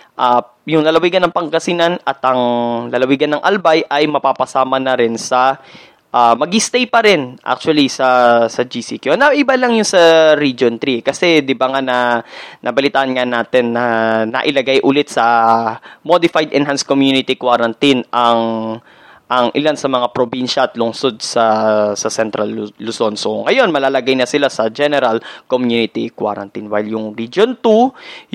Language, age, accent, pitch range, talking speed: Filipino, 20-39, native, 125-165 Hz, 150 wpm